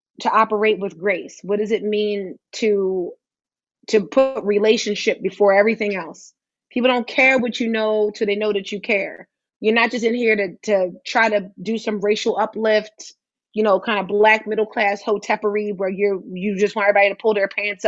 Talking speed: 190 wpm